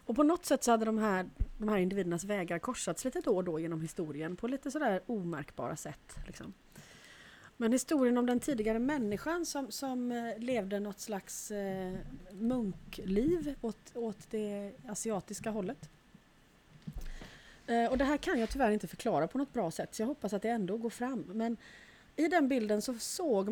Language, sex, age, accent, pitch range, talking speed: Swedish, female, 30-49, native, 205-265 Hz, 175 wpm